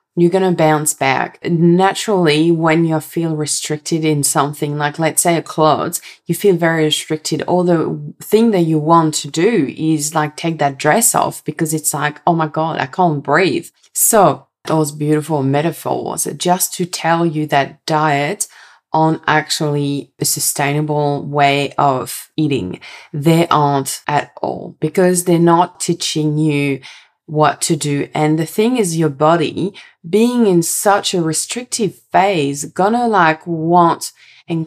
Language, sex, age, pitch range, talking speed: English, female, 20-39, 155-190 Hz, 155 wpm